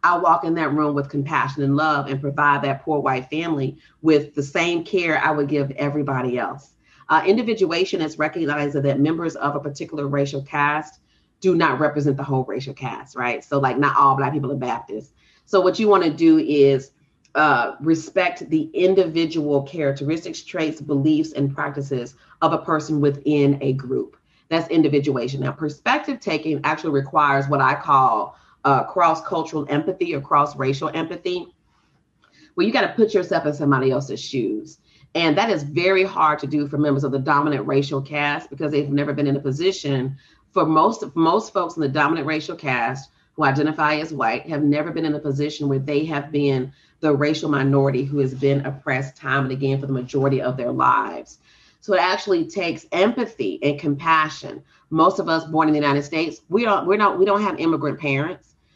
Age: 40-59